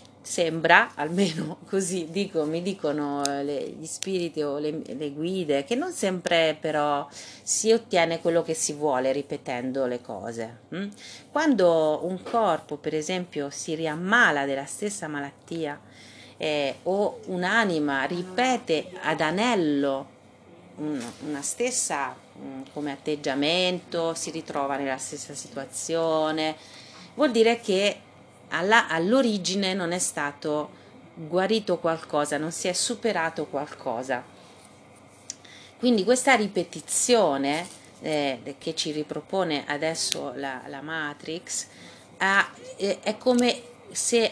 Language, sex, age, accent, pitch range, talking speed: Italian, female, 30-49, native, 145-190 Hz, 105 wpm